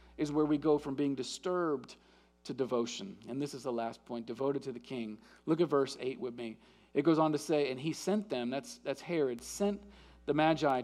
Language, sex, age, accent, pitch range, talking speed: English, male, 40-59, American, 145-215 Hz, 220 wpm